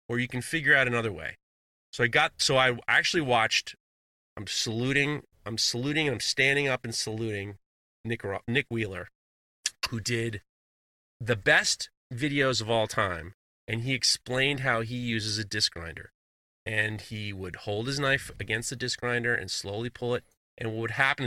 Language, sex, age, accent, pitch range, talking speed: English, male, 30-49, American, 100-130 Hz, 170 wpm